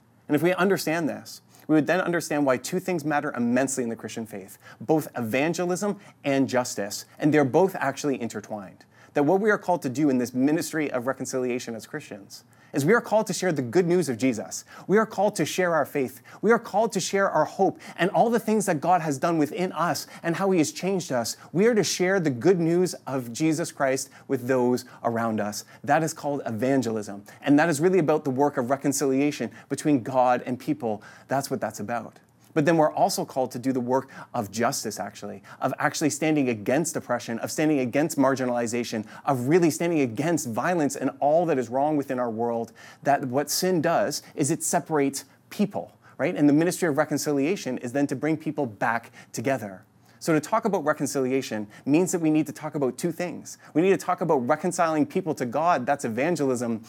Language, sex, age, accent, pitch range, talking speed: English, male, 30-49, American, 125-170 Hz, 210 wpm